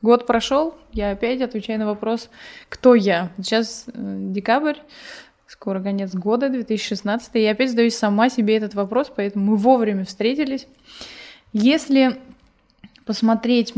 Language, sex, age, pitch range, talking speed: Russian, female, 20-39, 200-240 Hz, 125 wpm